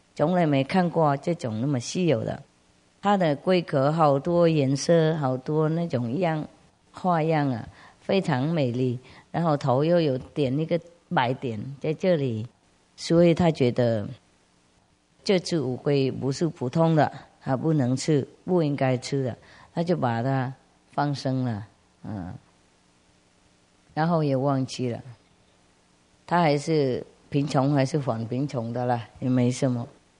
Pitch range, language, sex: 115-160 Hz, English, female